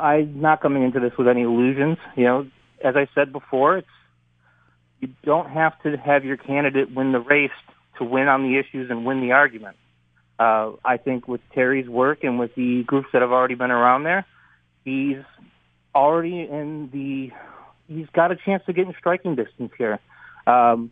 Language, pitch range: English, 120-140 Hz